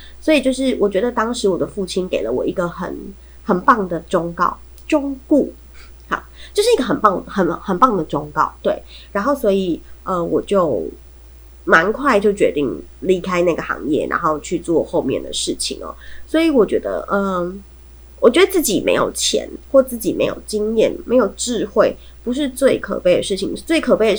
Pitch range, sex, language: 170-230 Hz, female, Chinese